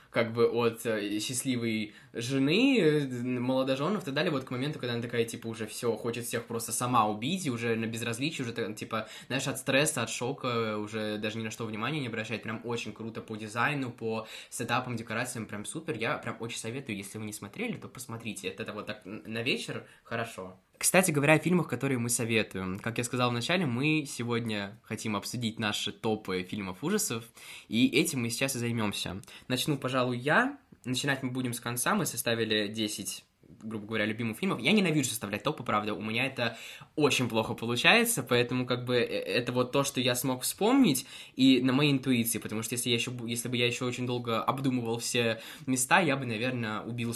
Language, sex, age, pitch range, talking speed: Russian, male, 20-39, 110-130 Hz, 190 wpm